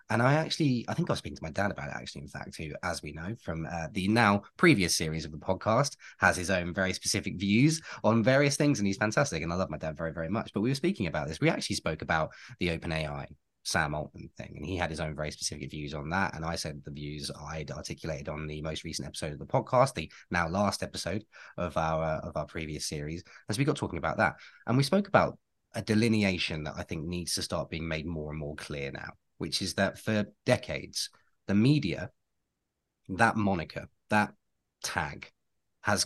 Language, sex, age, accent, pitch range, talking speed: English, male, 20-39, British, 80-105 Hz, 225 wpm